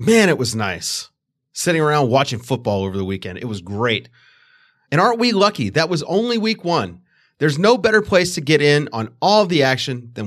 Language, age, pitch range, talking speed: English, 30-49, 115-175 Hz, 205 wpm